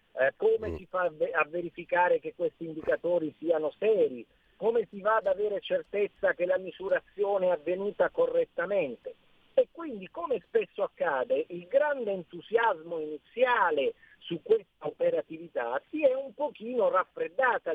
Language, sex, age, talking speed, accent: Italian, male, 50-69, 135 wpm, native